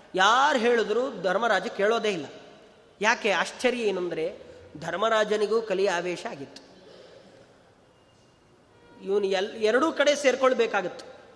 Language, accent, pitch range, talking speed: Kannada, native, 230-305 Hz, 95 wpm